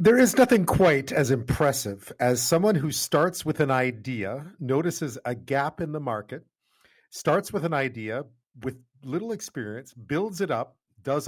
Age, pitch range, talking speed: 50-69, 115-165 Hz, 160 wpm